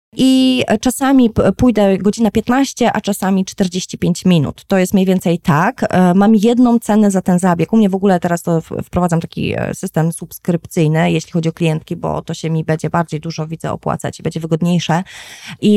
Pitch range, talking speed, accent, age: 170-205 Hz, 180 wpm, native, 20-39